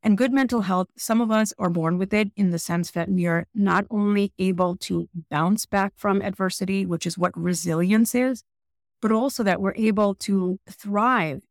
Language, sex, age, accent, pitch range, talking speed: English, female, 30-49, American, 175-210 Hz, 195 wpm